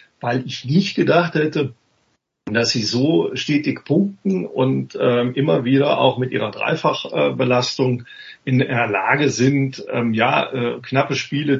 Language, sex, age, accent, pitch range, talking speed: German, male, 50-69, German, 120-140 Hz, 145 wpm